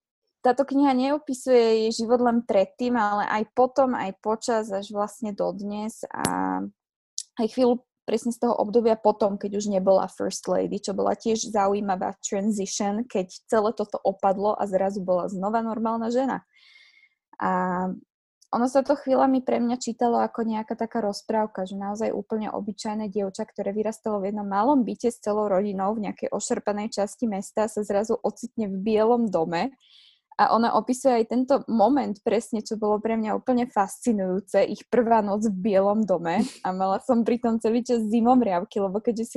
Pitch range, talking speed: 205-245 Hz, 170 wpm